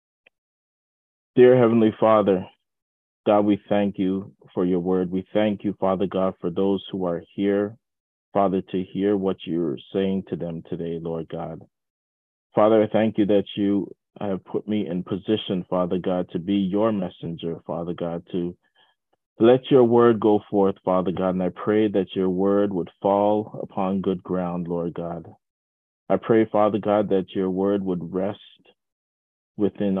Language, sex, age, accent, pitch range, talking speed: English, male, 30-49, American, 85-105 Hz, 160 wpm